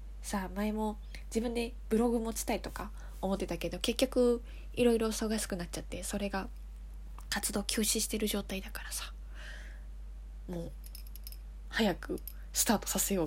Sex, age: female, 20-39